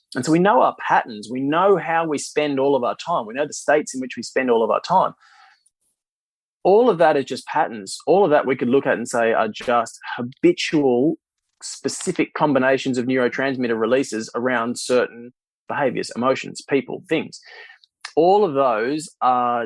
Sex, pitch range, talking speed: male, 115-145 Hz, 185 wpm